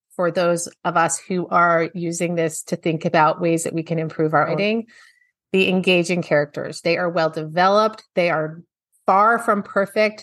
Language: English